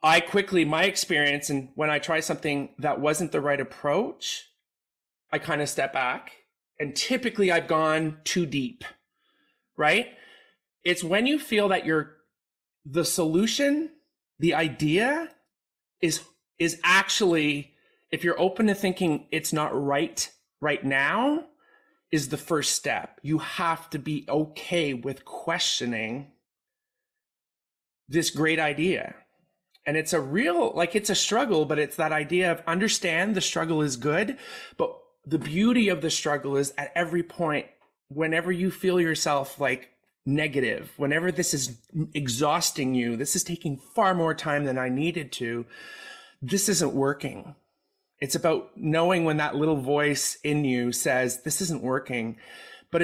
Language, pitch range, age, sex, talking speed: English, 145-190 Hz, 30-49, male, 145 wpm